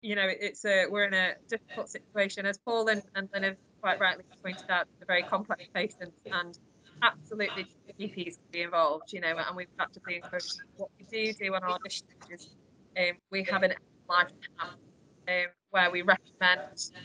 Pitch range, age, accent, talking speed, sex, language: 165-195 Hz, 20-39, British, 180 wpm, female, English